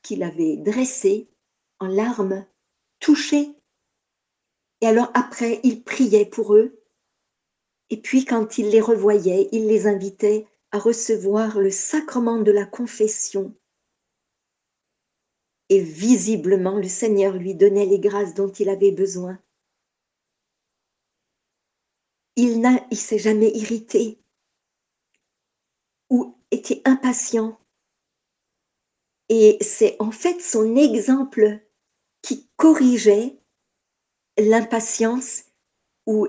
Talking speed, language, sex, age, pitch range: 100 wpm, French, female, 50-69, 200-245 Hz